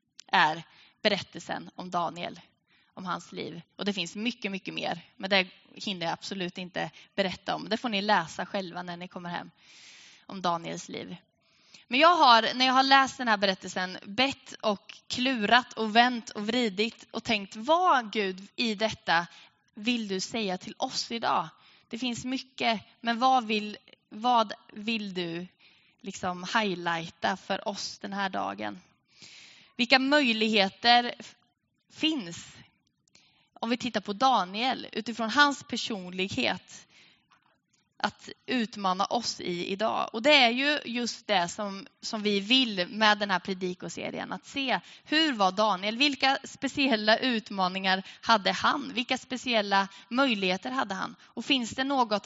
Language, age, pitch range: Swedish, 20-39, 190-245 Hz